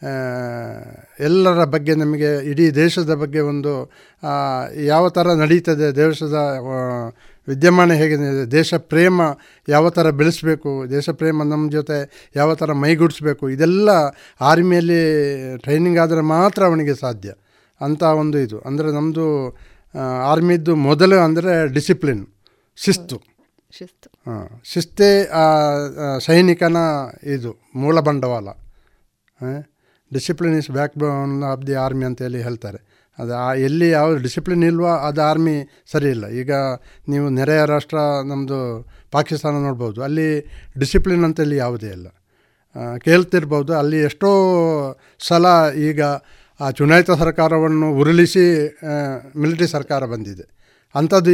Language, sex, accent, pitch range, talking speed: Kannada, male, native, 135-165 Hz, 105 wpm